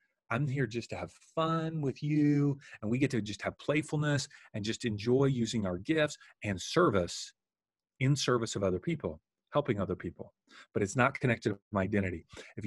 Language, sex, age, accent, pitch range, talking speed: English, male, 40-59, American, 105-140 Hz, 185 wpm